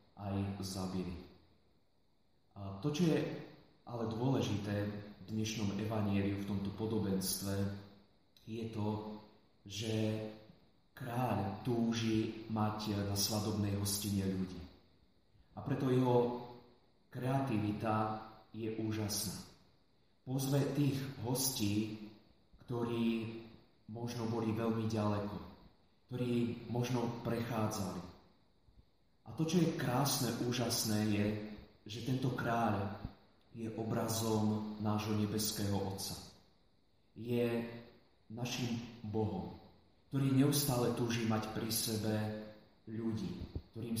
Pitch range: 105-115 Hz